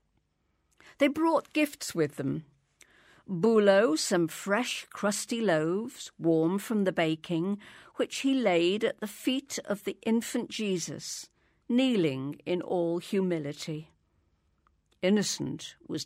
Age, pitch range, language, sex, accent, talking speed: 50-69, 155-240 Hz, English, female, British, 110 wpm